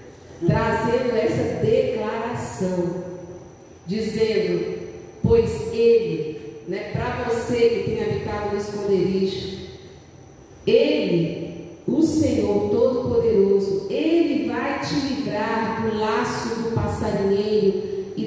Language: Portuguese